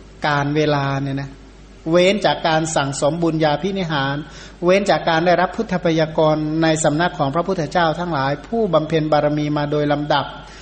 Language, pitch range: Thai, 150-185 Hz